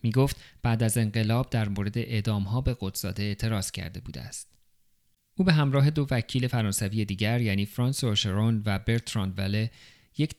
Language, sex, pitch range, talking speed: Persian, male, 105-125 Hz, 160 wpm